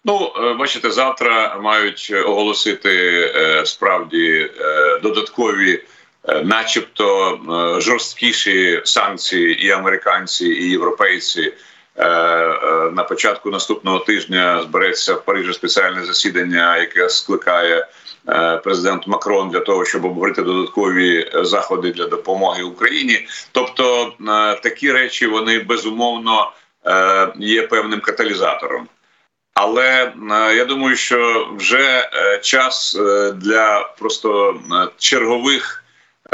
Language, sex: Ukrainian, male